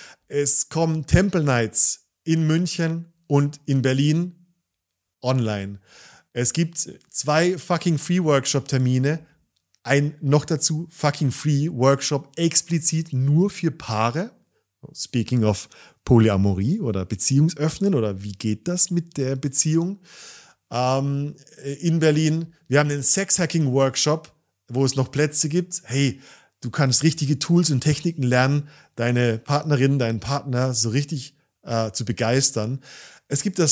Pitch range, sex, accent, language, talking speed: 130-160 Hz, male, German, German, 130 wpm